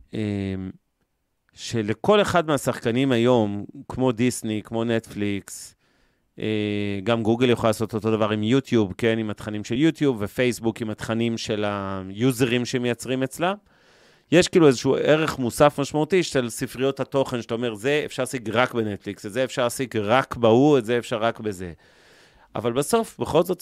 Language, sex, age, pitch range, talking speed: Hebrew, male, 30-49, 105-130 Hz, 150 wpm